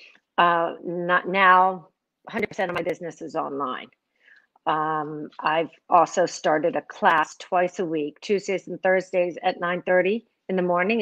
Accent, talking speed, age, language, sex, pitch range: American, 140 wpm, 40-59, English, female, 165-190 Hz